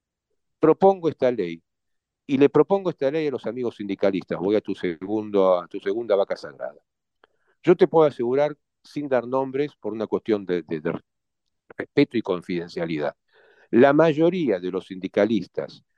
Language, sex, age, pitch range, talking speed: Spanish, male, 50-69, 100-145 Hz, 160 wpm